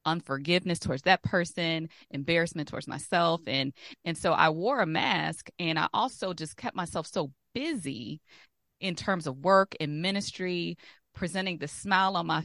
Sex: female